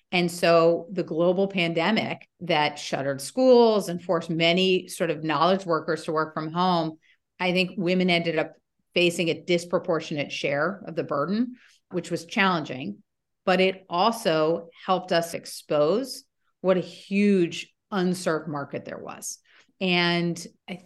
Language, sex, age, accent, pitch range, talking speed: English, female, 40-59, American, 160-185 Hz, 140 wpm